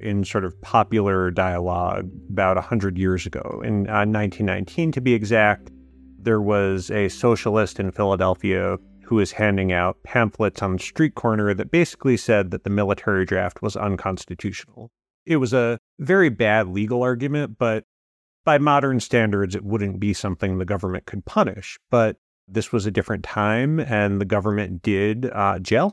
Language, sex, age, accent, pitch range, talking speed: English, male, 30-49, American, 95-115 Hz, 160 wpm